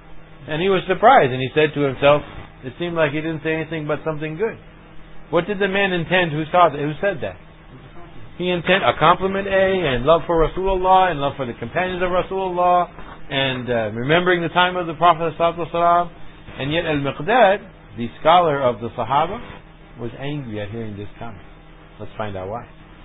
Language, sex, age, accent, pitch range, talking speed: English, male, 60-79, American, 135-180 Hz, 190 wpm